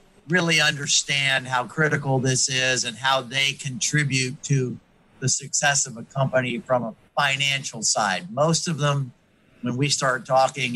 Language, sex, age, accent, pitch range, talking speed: English, male, 50-69, American, 130-160 Hz, 150 wpm